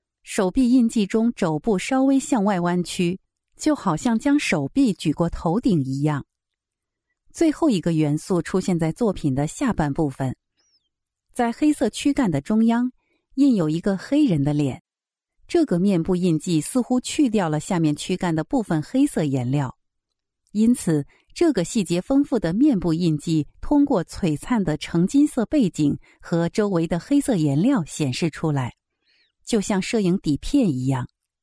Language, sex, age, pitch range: English, female, 50-69, 155-240 Hz